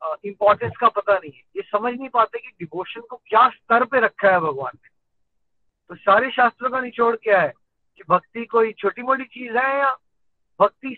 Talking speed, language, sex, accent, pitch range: 195 wpm, Hindi, male, native, 200-255 Hz